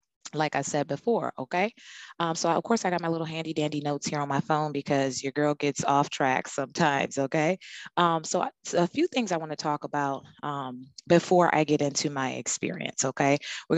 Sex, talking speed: female, 200 wpm